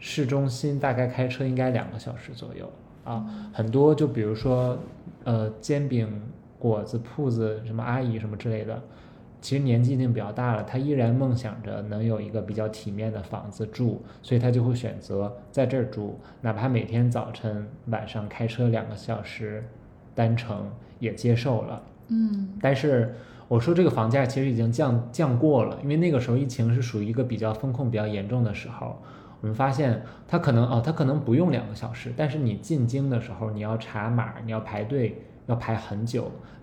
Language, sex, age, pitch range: Chinese, male, 20-39, 110-130 Hz